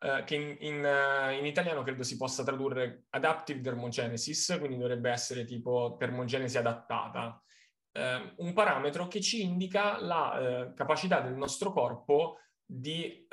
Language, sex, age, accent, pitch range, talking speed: Italian, male, 20-39, native, 120-175 Hz, 145 wpm